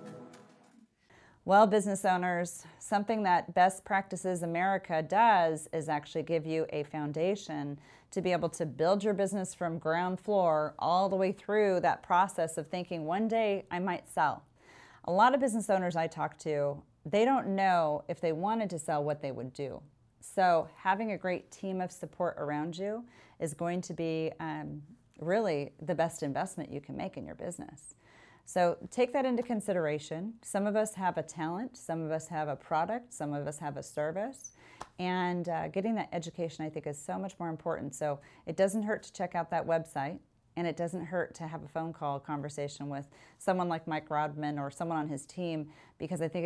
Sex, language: female, English